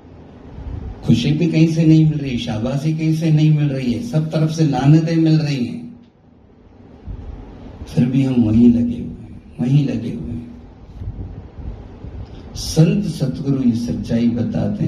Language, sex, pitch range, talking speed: Hindi, male, 85-125 Hz, 135 wpm